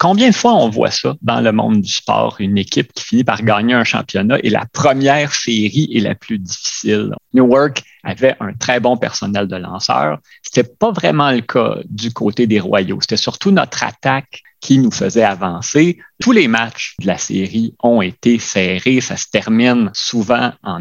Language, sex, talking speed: French, male, 190 wpm